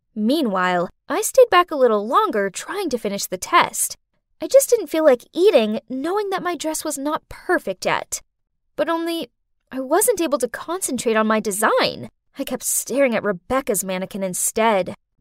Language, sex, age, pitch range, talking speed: English, female, 10-29, 215-330 Hz, 170 wpm